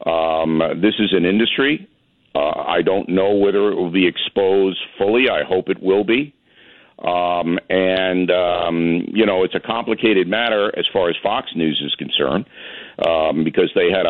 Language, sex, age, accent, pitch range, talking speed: English, male, 50-69, American, 90-105 Hz, 170 wpm